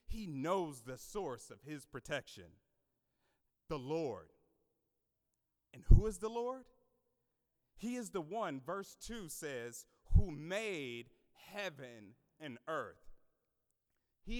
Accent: American